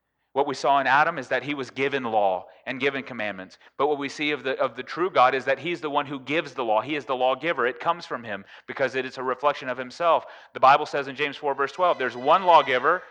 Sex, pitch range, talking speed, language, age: male, 120-145 Hz, 270 wpm, English, 30-49